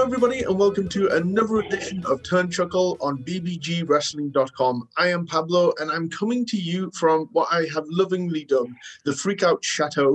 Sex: male